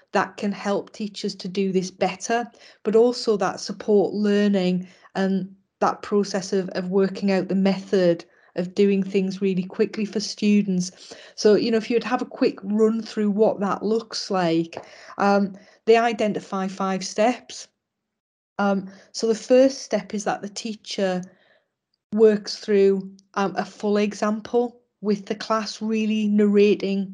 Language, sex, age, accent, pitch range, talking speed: English, female, 40-59, British, 195-220 Hz, 150 wpm